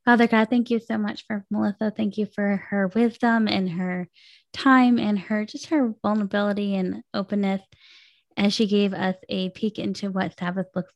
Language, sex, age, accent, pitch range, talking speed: English, female, 10-29, American, 185-215 Hz, 180 wpm